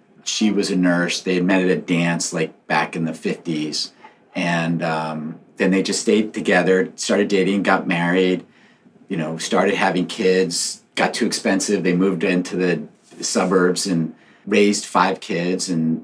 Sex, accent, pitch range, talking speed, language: male, American, 85-100 Hz, 160 wpm, English